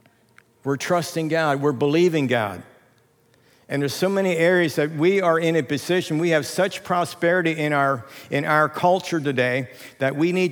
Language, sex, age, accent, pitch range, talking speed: English, male, 50-69, American, 150-175 Hz, 165 wpm